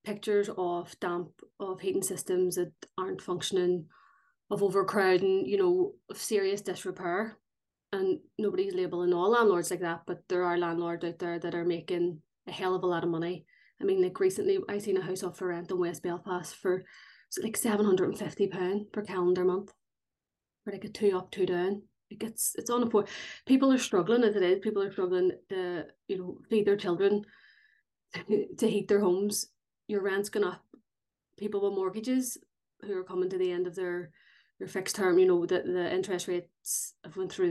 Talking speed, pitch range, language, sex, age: 190 wpm, 180-250 Hz, English, female, 30-49